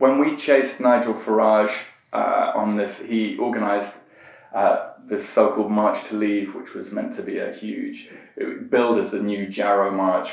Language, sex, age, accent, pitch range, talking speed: English, male, 20-39, British, 100-140 Hz, 170 wpm